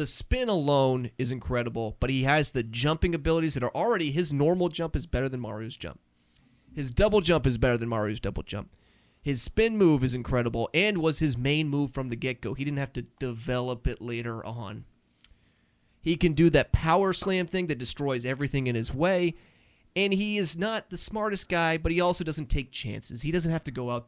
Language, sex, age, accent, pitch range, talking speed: English, male, 30-49, American, 120-170 Hz, 210 wpm